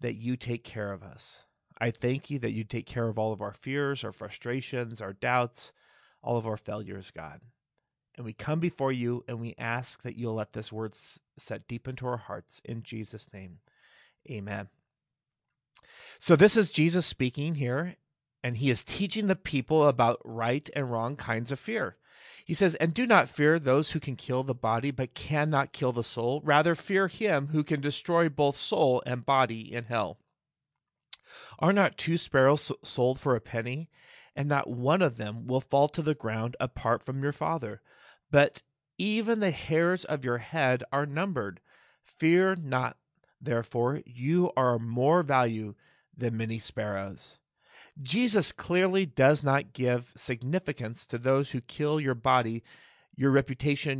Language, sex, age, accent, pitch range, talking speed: English, male, 30-49, American, 120-155 Hz, 170 wpm